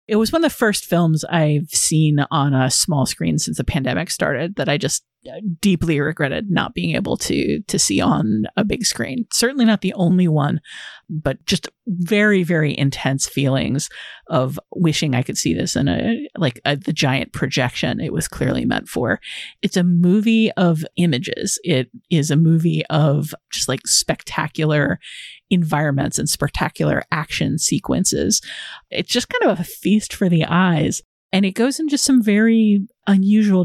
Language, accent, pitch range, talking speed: English, American, 150-200 Hz, 170 wpm